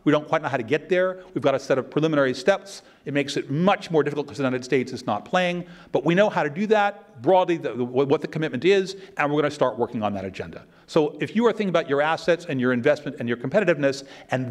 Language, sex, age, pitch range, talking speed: English, male, 40-59, 135-175 Hz, 265 wpm